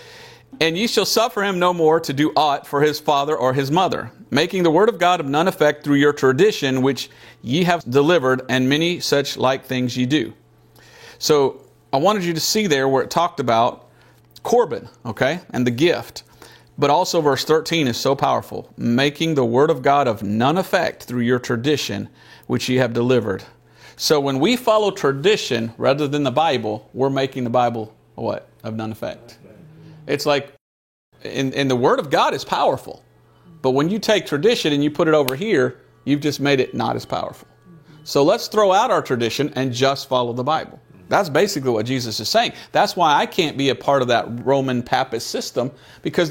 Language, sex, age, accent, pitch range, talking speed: English, male, 50-69, American, 130-170 Hz, 195 wpm